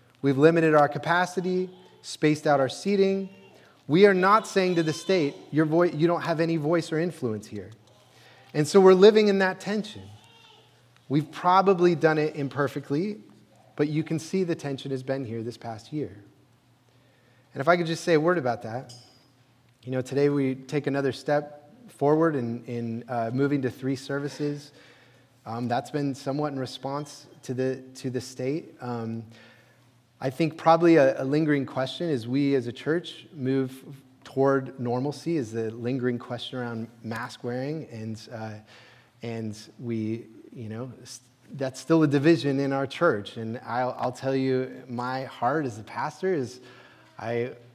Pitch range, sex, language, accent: 120-155 Hz, male, English, American